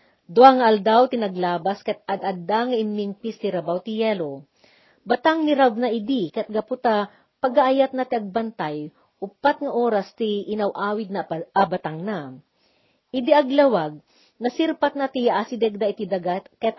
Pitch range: 185-240 Hz